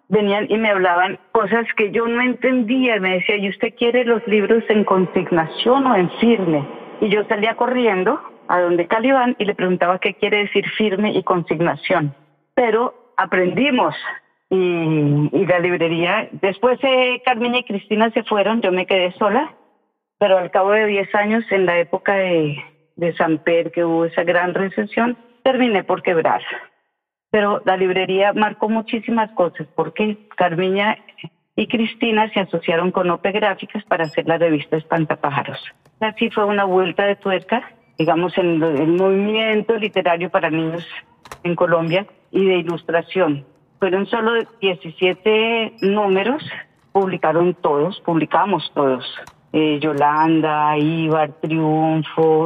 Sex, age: female, 40-59